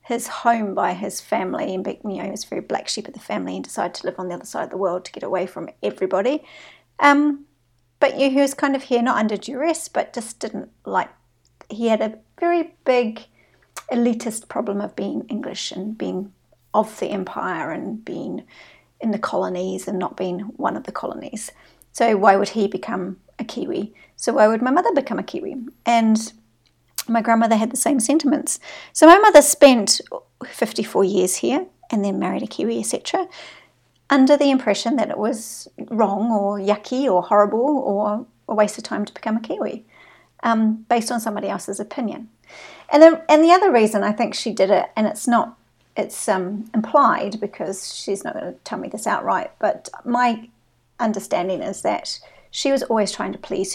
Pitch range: 205-275 Hz